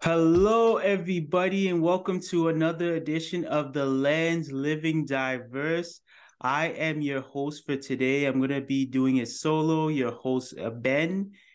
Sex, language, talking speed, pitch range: male, English, 145 wpm, 120-150 Hz